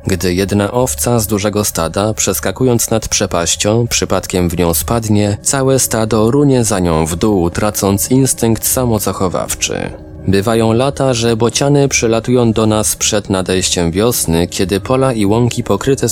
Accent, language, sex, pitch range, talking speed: native, Polish, male, 85-115 Hz, 140 wpm